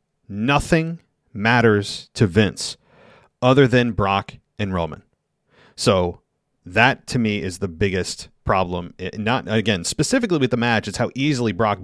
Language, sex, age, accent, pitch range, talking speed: English, male, 30-49, American, 100-125 Hz, 140 wpm